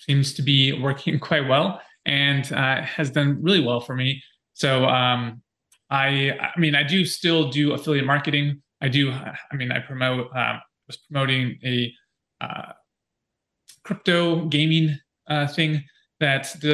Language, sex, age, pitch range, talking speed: English, male, 20-39, 125-145 Hz, 150 wpm